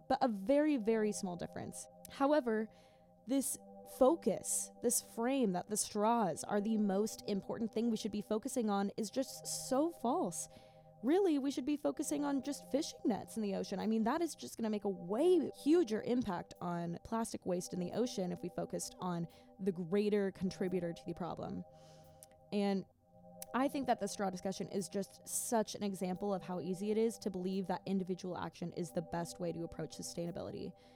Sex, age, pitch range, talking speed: female, 10-29, 180-245 Hz, 190 wpm